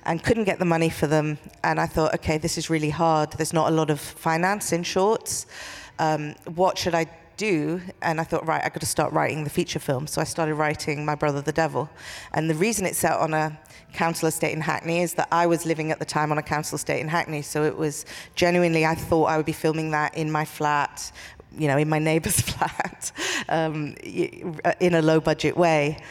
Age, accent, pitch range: 40-59, British, 150-165 Hz